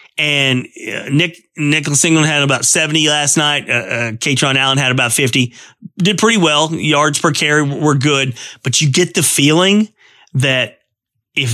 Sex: male